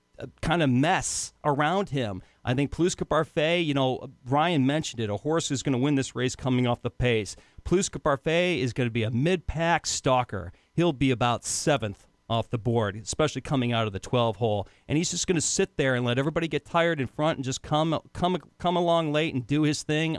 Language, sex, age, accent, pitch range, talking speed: English, male, 40-59, American, 125-165 Hz, 220 wpm